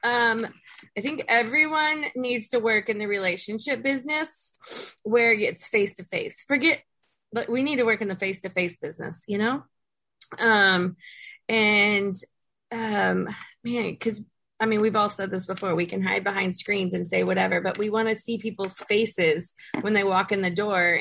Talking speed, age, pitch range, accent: 170 wpm, 20-39, 195-270 Hz, American